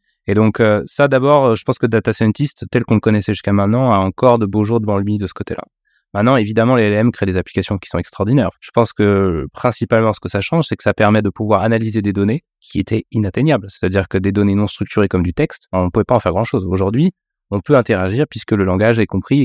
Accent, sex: French, male